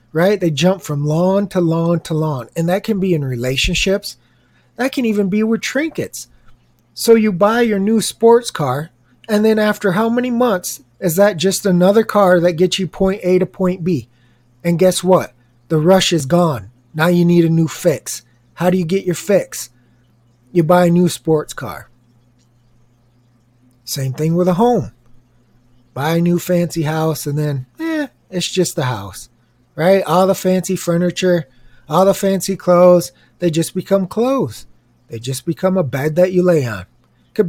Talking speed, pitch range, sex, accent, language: 180 wpm, 130-205 Hz, male, American, English